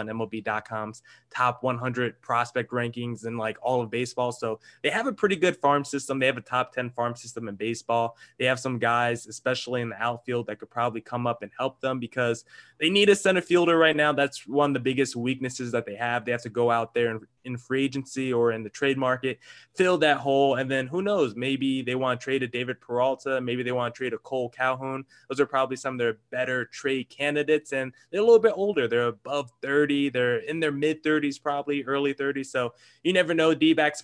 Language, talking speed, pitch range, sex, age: English, 225 wpm, 120-160 Hz, male, 20-39